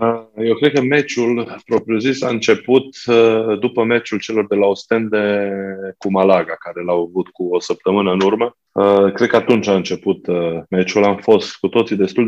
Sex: male